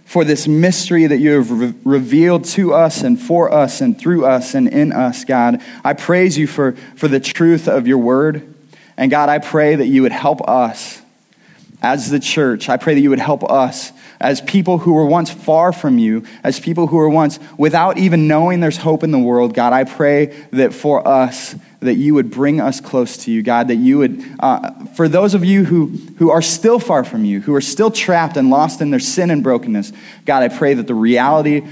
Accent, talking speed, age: American, 220 wpm, 20-39